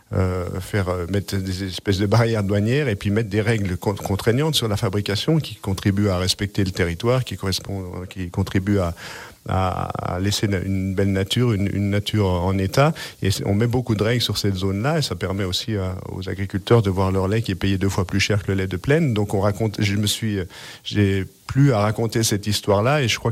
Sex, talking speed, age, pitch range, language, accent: male, 225 wpm, 50-69, 100-115 Hz, French, French